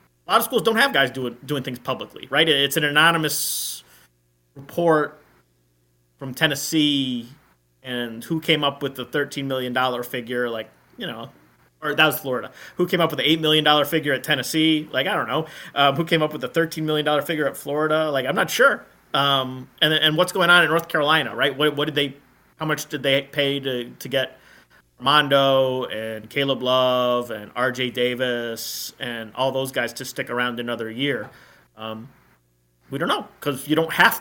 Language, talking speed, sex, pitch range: English, 195 wpm, male, 120-155 Hz